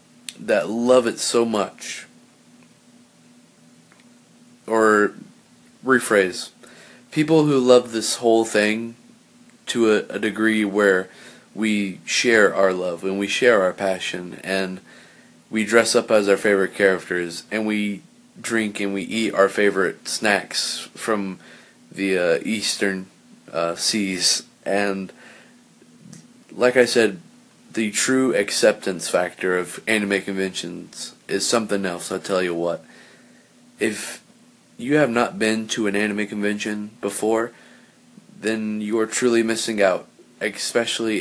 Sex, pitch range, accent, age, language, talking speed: male, 100-115 Hz, American, 30-49, English, 125 wpm